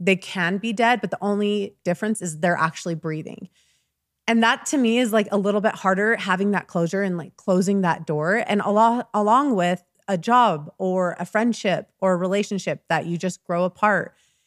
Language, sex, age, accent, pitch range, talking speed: English, female, 20-39, American, 175-210 Hz, 190 wpm